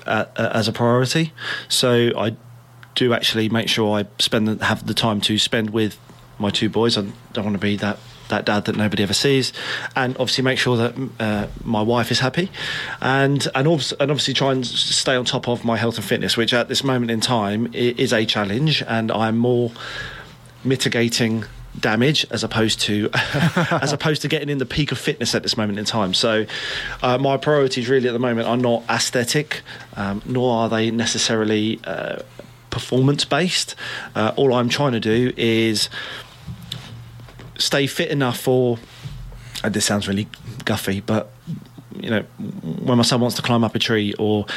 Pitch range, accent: 110-130 Hz, British